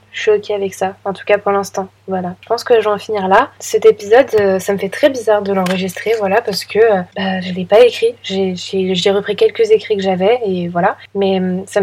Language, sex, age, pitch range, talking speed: French, female, 20-39, 195-235 Hz, 245 wpm